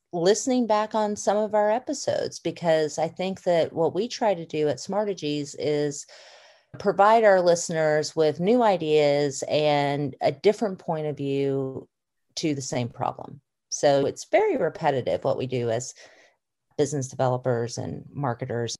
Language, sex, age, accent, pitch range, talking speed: English, female, 40-59, American, 135-190 Hz, 150 wpm